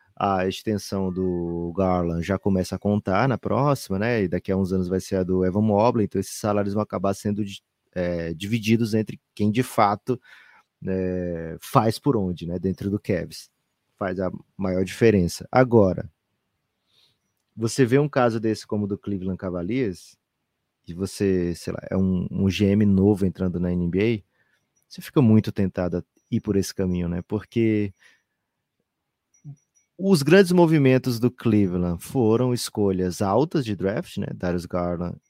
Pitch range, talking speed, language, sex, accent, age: 95-125 Hz, 160 wpm, Portuguese, male, Brazilian, 20-39